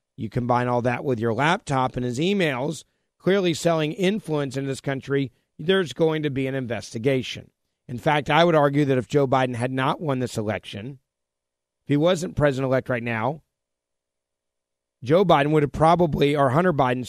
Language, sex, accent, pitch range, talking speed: English, male, American, 115-150 Hz, 175 wpm